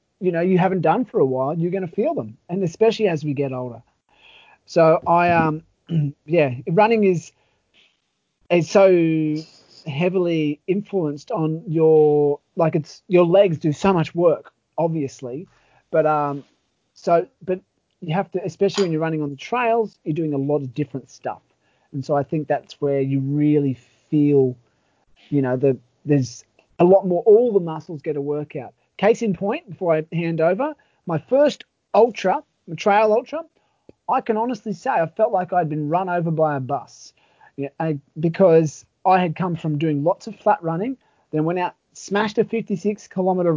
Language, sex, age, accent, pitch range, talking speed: English, male, 30-49, Australian, 150-190 Hz, 180 wpm